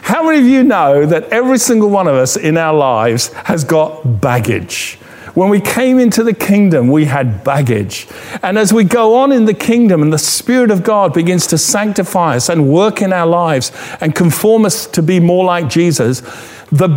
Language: English